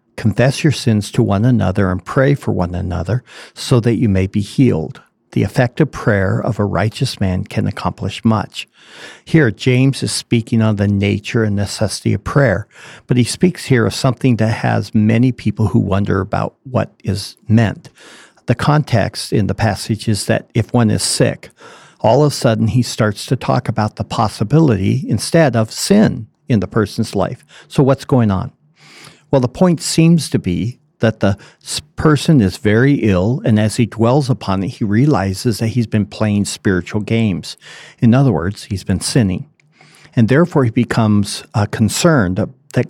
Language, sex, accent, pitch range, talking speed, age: English, male, American, 105-130 Hz, 175 wpm, 50-69